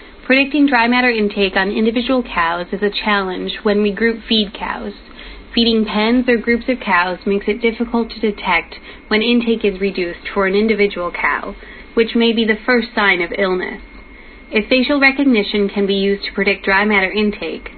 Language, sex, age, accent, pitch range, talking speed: English, female, 30-49, American, 190-230 Hz, 180 wpm